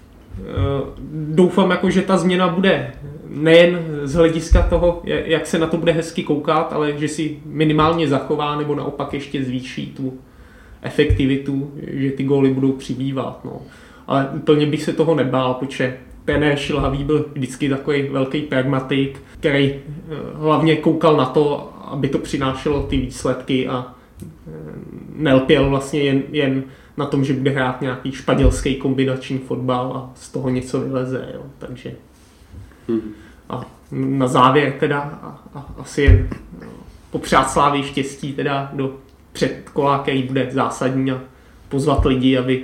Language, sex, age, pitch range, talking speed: Czech, male, 20-39, 130-150 Hz, 140 wpm